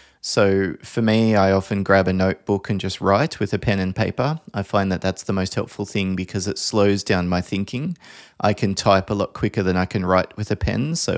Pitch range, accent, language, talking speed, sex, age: 95-110 Hz, Australian, English, 235 wpm, male, 20-39